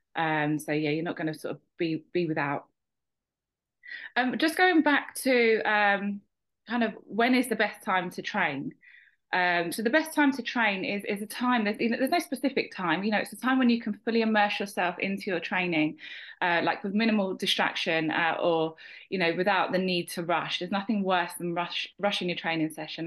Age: 20-39